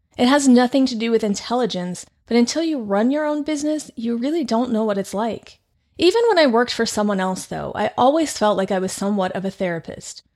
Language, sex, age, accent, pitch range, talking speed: English, female, 30-49, American, 205-260 Hz, 225 wpm